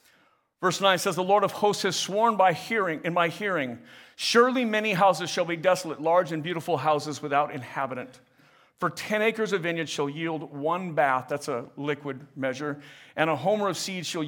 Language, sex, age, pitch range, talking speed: English, male, 50-69, 155-205 Hz, 190 wpm